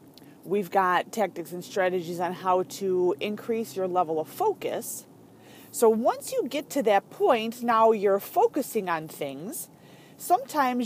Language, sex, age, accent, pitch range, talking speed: English, female, 30-49, American, 185-245 Hz, 145 wpm